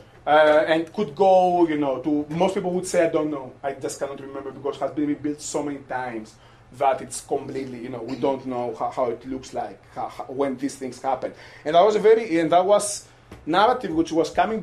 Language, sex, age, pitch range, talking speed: English, male, 30-49, 140-185 Hz, 235 wpm